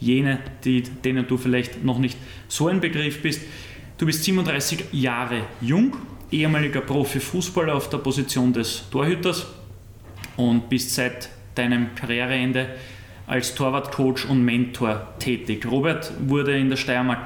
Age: 20-39